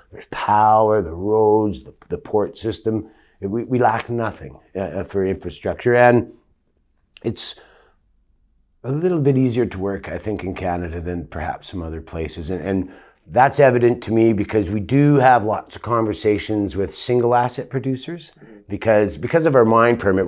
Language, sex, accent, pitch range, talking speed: English, male, American, 100-125 Hz, 165 wpm